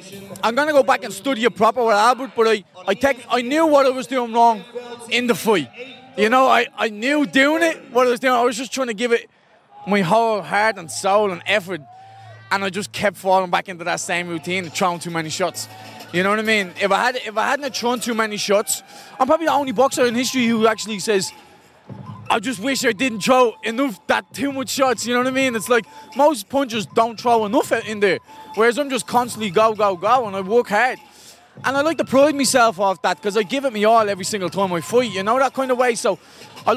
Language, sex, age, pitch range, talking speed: English, male, 20-39, 190-255 Hz, 250 wpm